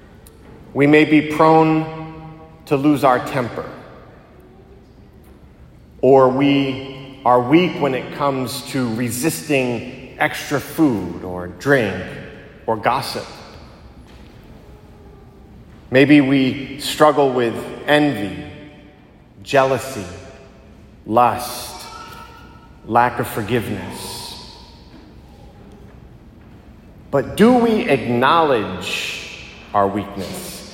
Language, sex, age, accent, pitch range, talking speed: English, male, 30-49, American, 110-145 Hz, 75 wpm